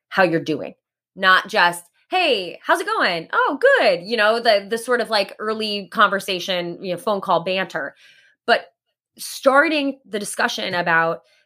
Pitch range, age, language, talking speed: 180-255 Hz, 20-39, English, 155 wpm